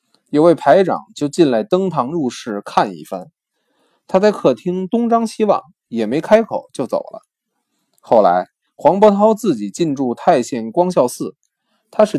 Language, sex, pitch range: Chinese, male, 135-195 Hz